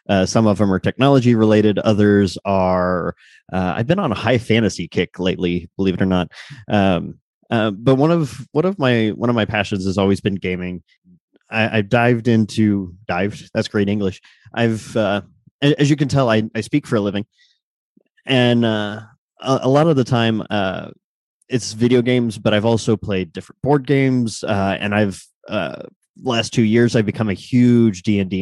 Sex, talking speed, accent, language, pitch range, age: male, 190 wpm, American, English, 95-115 Hz, 20-39